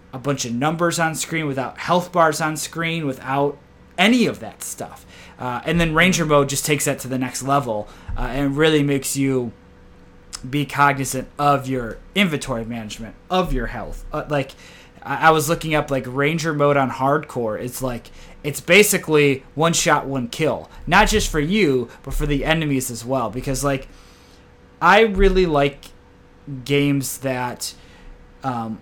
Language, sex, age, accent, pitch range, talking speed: English, male, 20-39, American, 125-155 Hz, 165 wpm